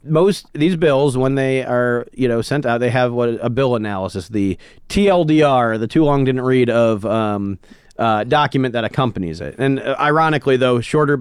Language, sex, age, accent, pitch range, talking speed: English, male, 40-59, American, 120-140 Hz, 185 wpm